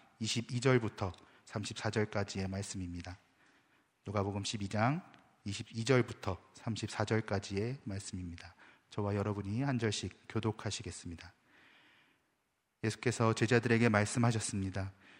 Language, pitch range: Korean, 100-115 Hz